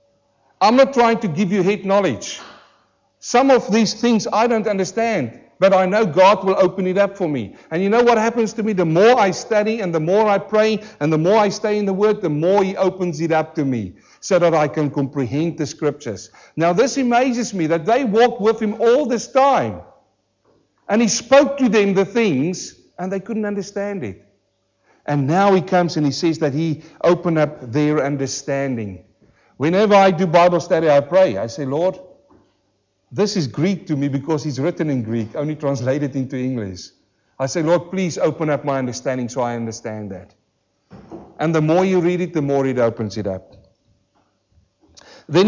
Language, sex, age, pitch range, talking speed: English, male, 50-69, 140-205 Hz, 200 wpm